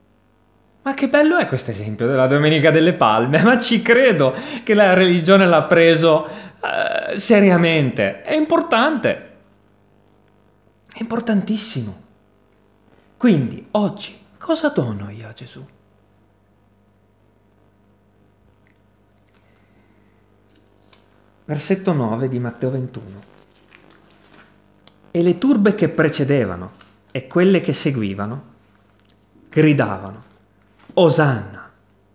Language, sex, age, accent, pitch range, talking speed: Italian, male, 30-49, native, 105-160 Hz, 85 wpm